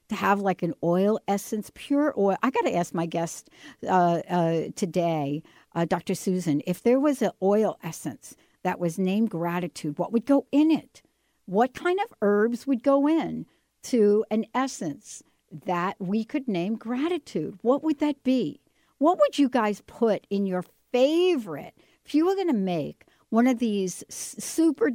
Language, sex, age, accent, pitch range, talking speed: English, female, 60-79, American, 190-280 Hz, 175 wpm